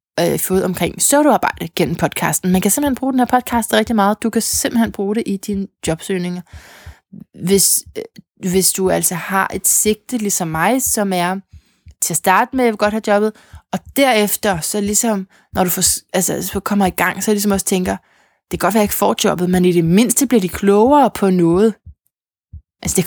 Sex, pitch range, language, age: female, 185-230 Hz, Danish, 20-39